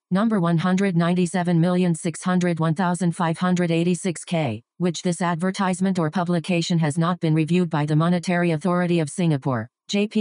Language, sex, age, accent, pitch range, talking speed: English, female, 40-59, American, 165-185 Hz, 105 wpm